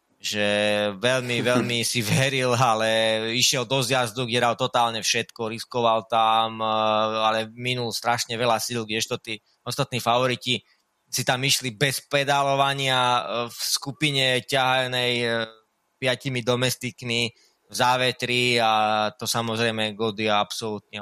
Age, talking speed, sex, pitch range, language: 20-39, 115 wpm, male, 115-135 Hz, Slovak